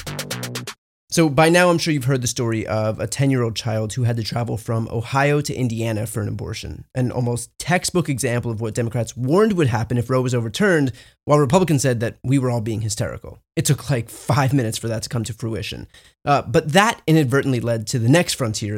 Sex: male